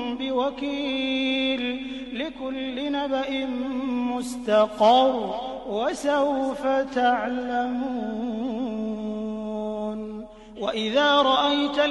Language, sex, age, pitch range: English, male, 30-49, 250-285 Hz